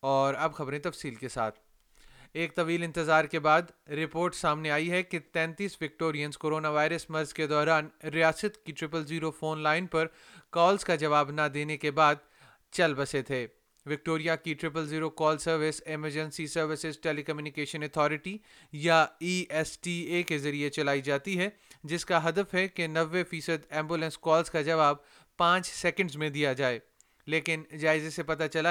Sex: male